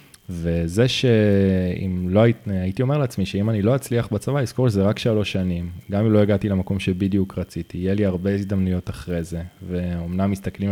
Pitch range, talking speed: 95-105 Hz, 170 wpm